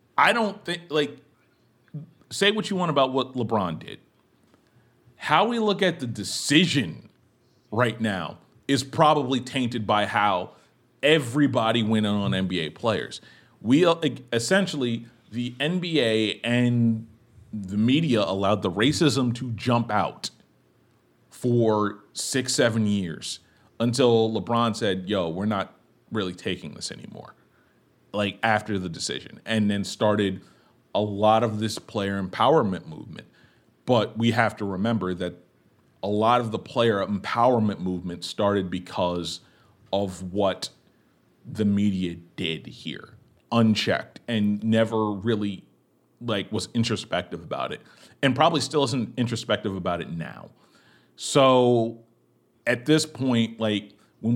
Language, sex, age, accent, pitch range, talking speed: English, male, 40-59, American, 100-130 Hz, 130 wpm